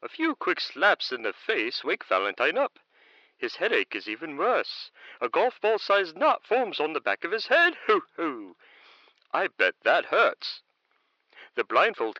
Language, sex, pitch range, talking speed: English, male, 255-425 Hz, 155 wpm